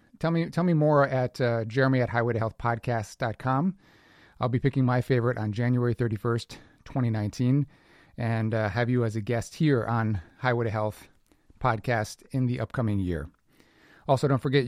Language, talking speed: English, 160 wpm